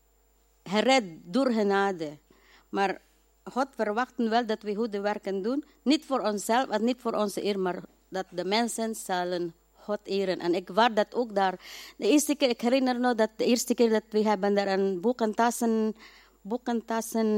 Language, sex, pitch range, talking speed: Dutch, female, 200-245 Hz, 175 wpm